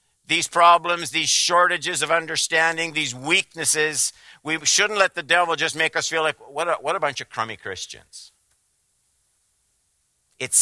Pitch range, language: 100-165 Hz, English